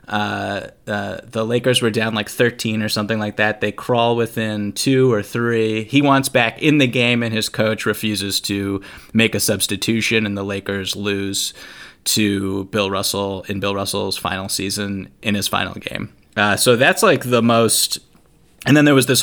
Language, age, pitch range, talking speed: English, 20-39, 100-115 Hz, 185 wpm